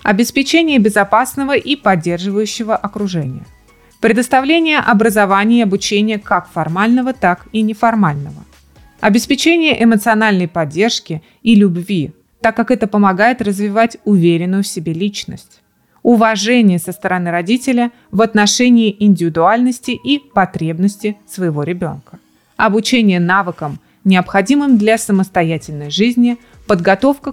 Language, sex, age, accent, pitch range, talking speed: Russian, female, 30-49, native, 185-240 Hz, 100 wpm